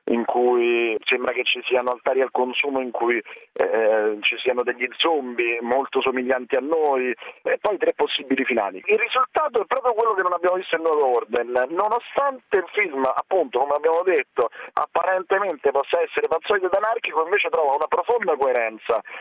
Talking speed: 170 wpm